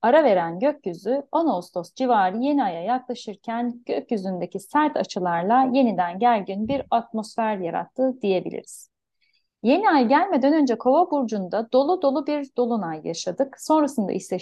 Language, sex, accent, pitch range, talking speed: Turkish, female, native, 215-280 Hz, 130 wpm